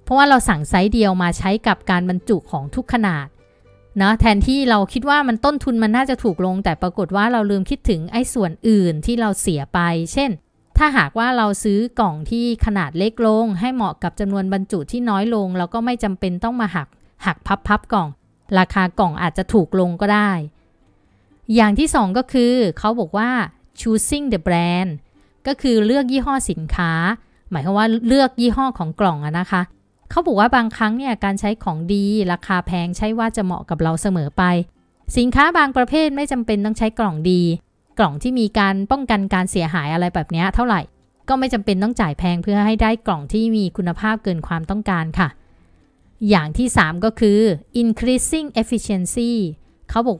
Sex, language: female, Thai